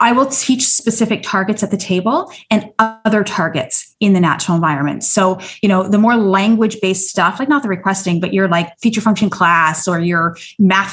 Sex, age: female, 30-49